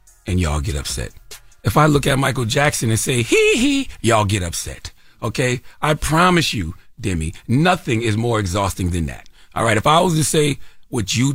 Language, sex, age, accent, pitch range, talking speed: English, male, 40-59, American, 100-140 Hz, 195 wpm